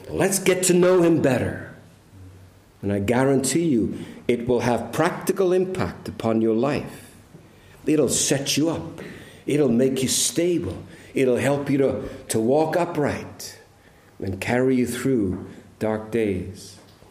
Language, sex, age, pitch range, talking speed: English, male, 50-69, 120-155 Hz, 135 wpm